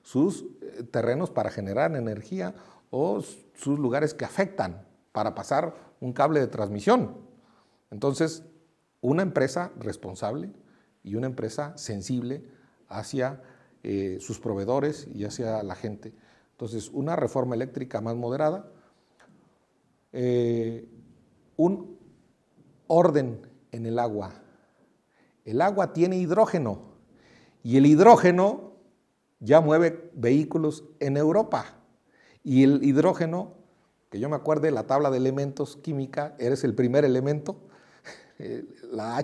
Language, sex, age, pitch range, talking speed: English, male, 50-69, 115-160 Hz, 110 wpm